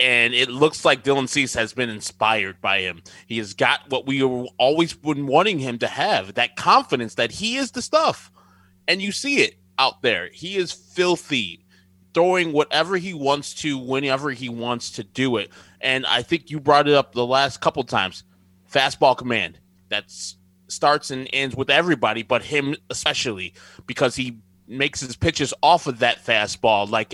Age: 20-39